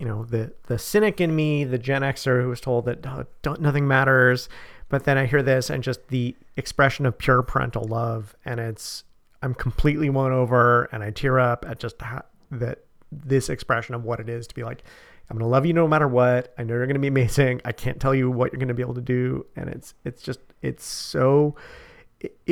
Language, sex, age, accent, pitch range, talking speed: English, male, 40-59, American, 120-140 Hz, 235 wpm